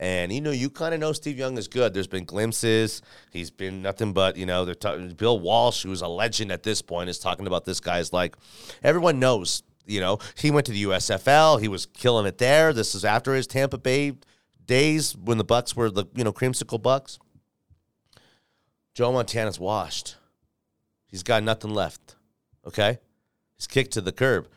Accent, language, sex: American, English, male